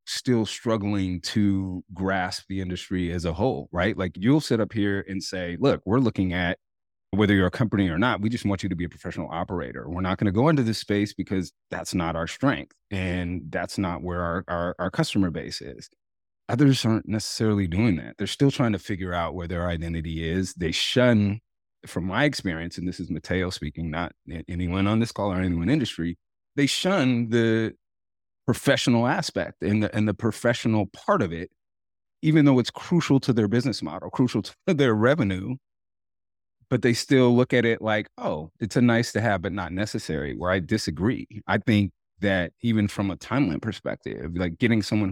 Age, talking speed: 30-49, 195 wpm